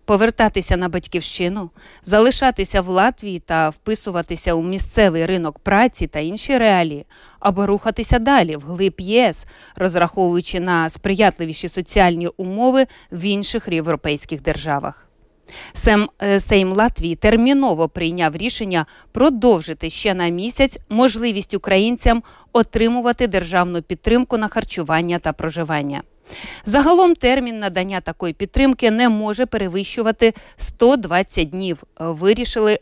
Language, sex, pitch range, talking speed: Ukrainian, female, 175-230 Hz, 110 wpm